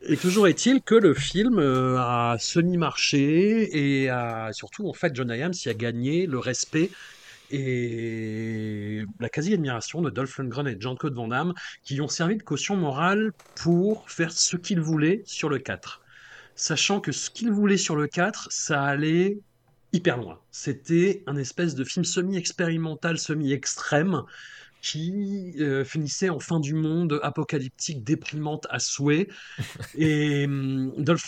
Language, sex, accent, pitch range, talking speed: French, male, French, 135-180 Hz, 150 wpm